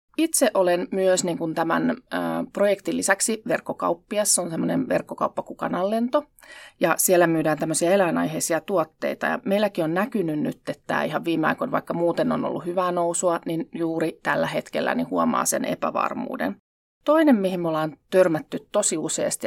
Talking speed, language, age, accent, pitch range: 155 wpm, Finnish, 30-49, native, 165-205 Hz